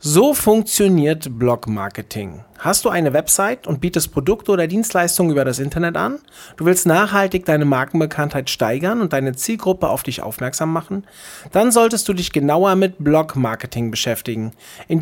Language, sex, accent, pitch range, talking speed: German, male, German, 140-200 Hz, 150 wpm